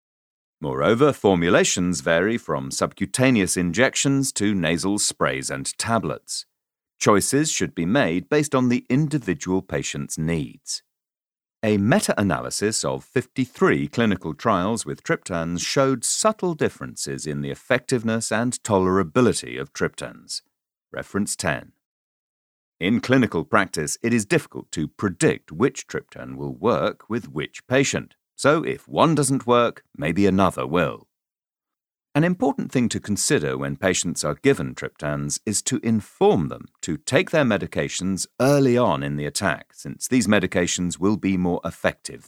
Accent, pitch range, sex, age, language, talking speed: British, 85-125 Hz, male, 40-59, English, 135 wpm